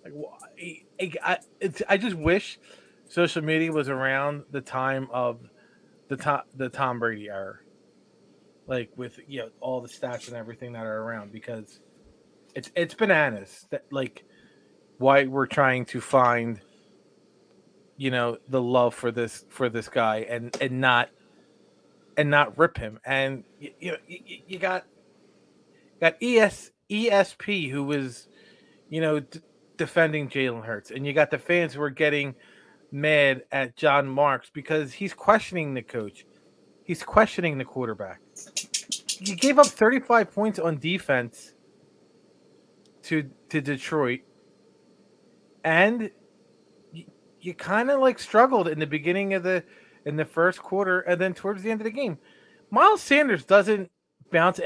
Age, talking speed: 30-49, 145 wpm